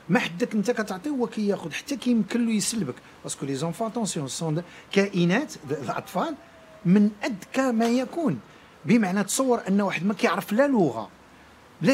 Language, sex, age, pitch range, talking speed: Arabic, male, 50-69, 145-225 Hz, 150 wpm